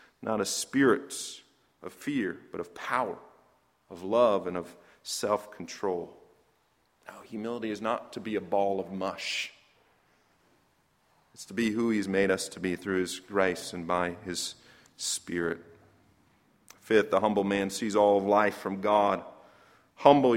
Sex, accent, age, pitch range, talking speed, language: male, American, 40-59, 100-140 Hz, 145 wpm, English